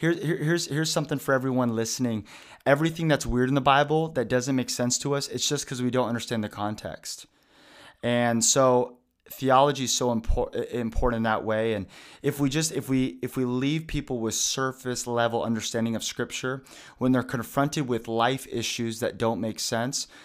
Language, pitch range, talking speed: English, 110-130 Hz, 185 wpm